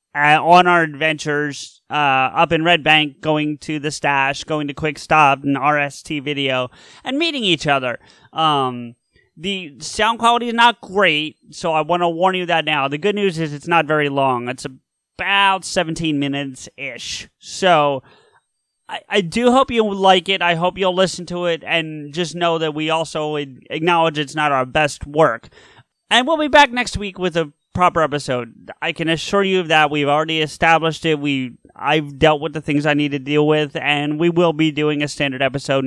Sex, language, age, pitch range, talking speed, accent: male, English, 30-49, 140-170 Hz, 195 wpm, American